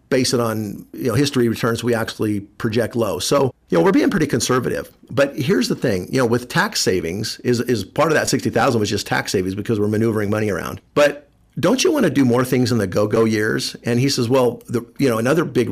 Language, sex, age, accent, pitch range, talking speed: English, male, 50-69, American, 105-125 Hz, 250 wpm